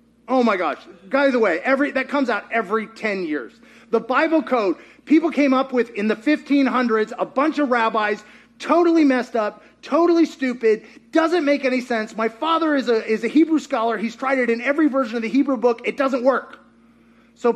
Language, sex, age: English, male, 30-49